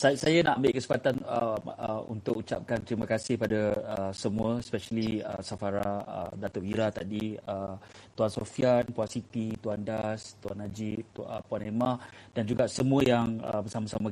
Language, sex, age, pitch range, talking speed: Malay, male, 30-49, 105-130 Hz, 160 wpm